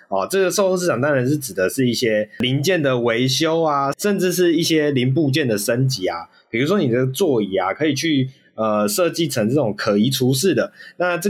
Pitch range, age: 115-175 Hz, 20-39